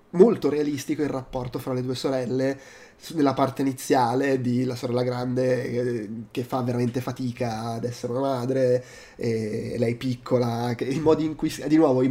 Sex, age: male, 20-39